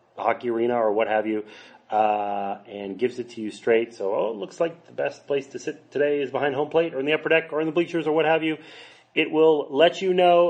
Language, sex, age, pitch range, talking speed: English, male, 30-49, 125-195 Hz, 265 wpm